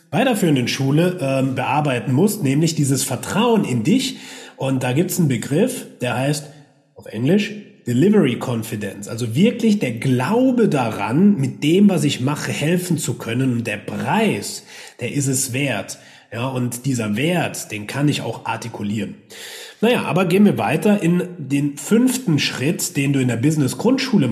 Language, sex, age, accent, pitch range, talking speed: German, male, 30-49, German, 125-195 Hz, 160 wpm